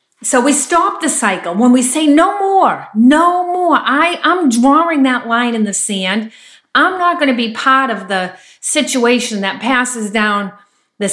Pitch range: 215-285 Hz